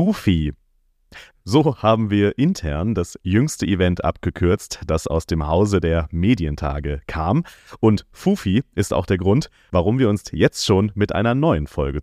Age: 30-49